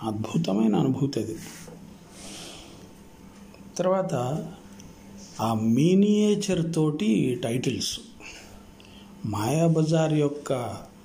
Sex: male